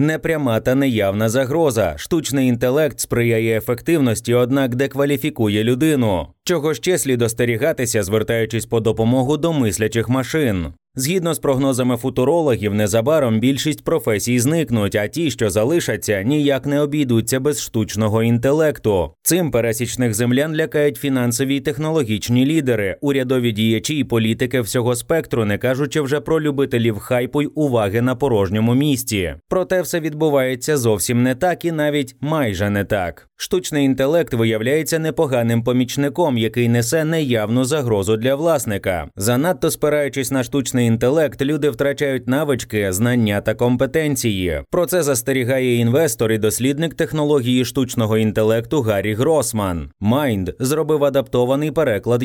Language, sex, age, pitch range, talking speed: Ukrainian, male, 30-49, 115-150 Hz, 130 wpm